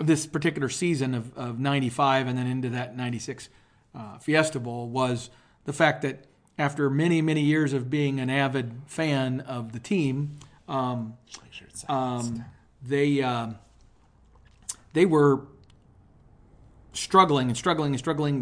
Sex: male